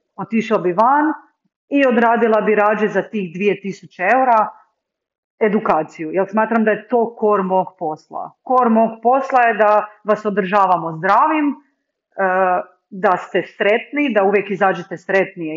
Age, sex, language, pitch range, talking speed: 40-59, female, Croatian, 190-245 Hz, 125 wpm